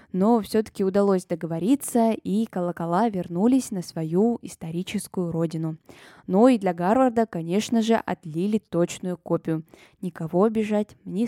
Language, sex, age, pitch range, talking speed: Russian, female, 20-39, 180-225 Hz, 120 wpm